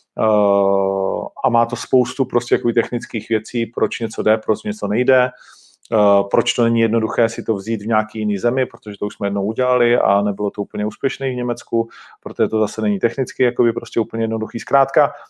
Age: 40-59